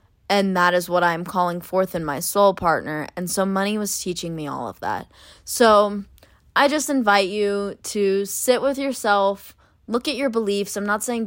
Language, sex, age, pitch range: English, female, 20-39, 180-225 Hz